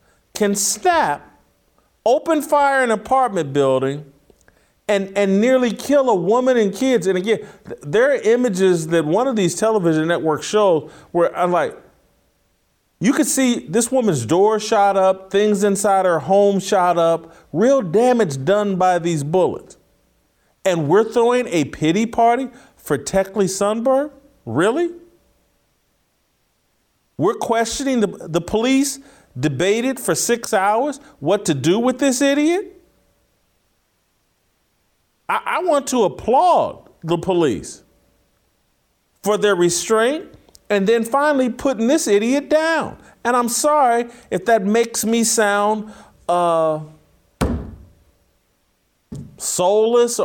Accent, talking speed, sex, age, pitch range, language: American, 125 wpm, male, 50-69, 175-255 Hz, English